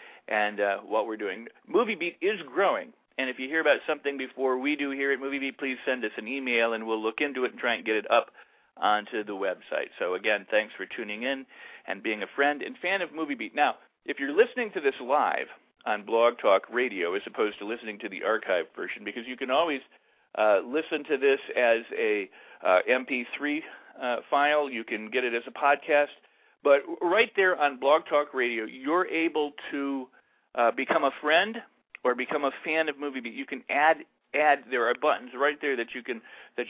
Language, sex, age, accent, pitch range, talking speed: English, male, 50-69, American, 120-145 Hz, 210 wpm